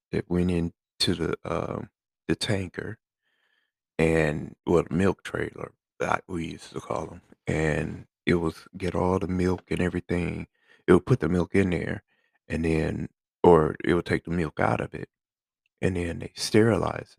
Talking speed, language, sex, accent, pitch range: 170 wpm, English, male, American, 85-105 Hz